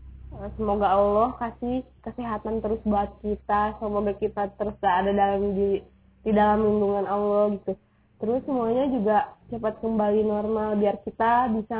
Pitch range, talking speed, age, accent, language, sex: 195-230 Hz, 140 wpm, 20-39, native, Indonesian, female